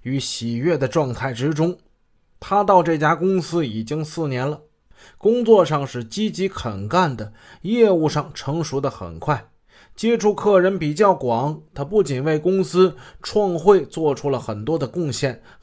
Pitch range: 125-175 Hz